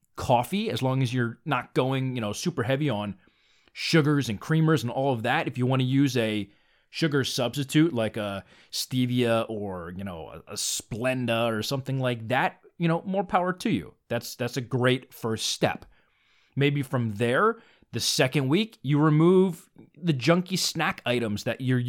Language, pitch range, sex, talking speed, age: English, 120-165 Hz, male, 180 wpm, 30-49